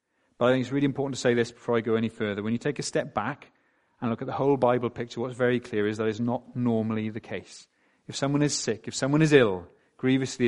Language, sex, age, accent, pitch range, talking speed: English, male, 30-49, British, 115-135 Hz, 265 wpm